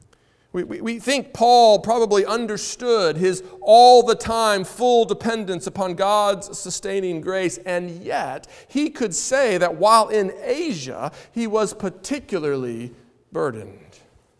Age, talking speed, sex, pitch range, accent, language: 40-59, 125 wpm, male, 165-225 Hz, American, English